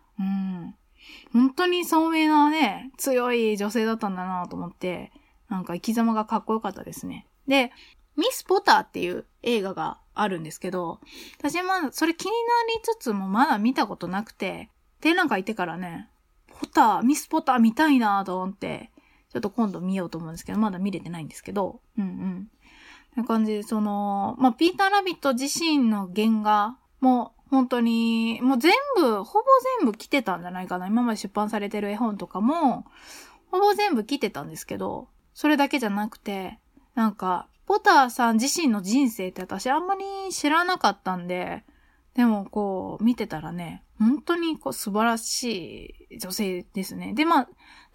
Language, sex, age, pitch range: Japanese, female, 20-39, 205-305 Hz